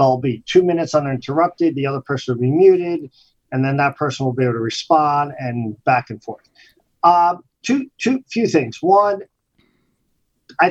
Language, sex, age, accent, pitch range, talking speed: English, male, 50-69, American, 130-175 Hz, 175 wpm